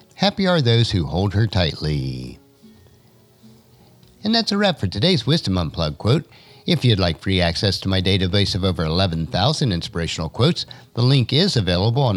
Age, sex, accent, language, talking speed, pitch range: 50-69, male, American, English, 170 wpm, 85-145 Hz